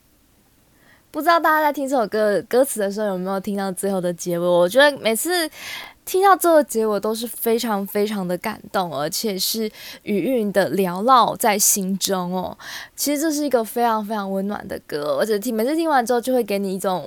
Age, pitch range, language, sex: 20-39, 195-245 Hz, Chinese, female